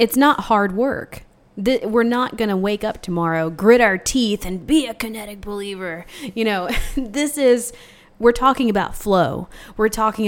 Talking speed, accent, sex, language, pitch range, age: 165 wpm, American, female, English, 180-230 Hz, 20-39